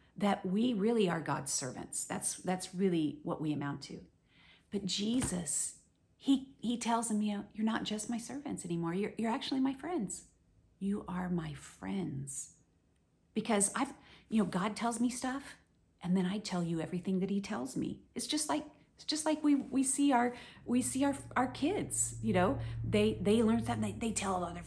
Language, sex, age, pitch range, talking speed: English, female, 40-59, 180-255 Hz, 195 wpm